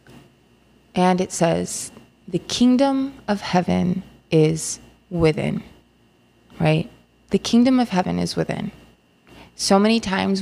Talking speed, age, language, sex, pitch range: 110 wpm, 20-39, English, female, 155-185 Hz